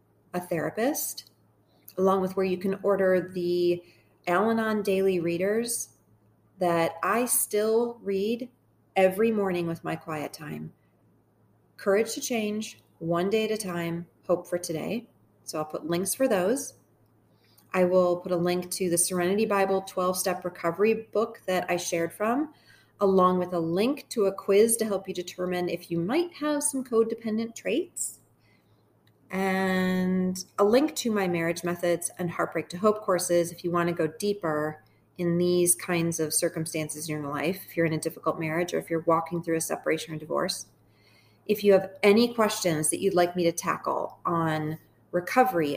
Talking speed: 165 wpm